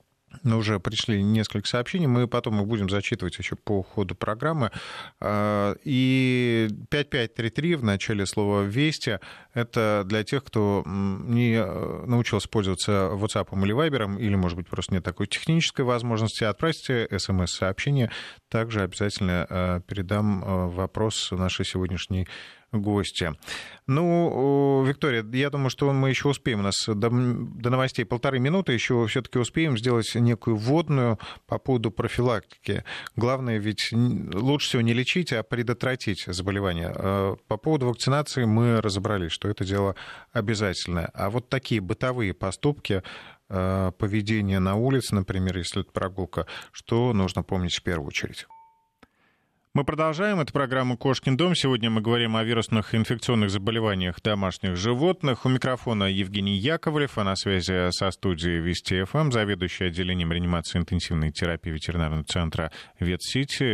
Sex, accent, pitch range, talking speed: male, native, 95-125 Hz, 130 wpm